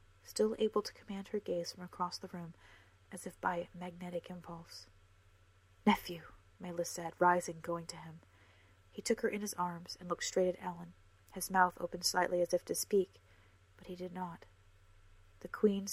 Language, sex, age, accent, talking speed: English, female, 30-49, American, 175 wpm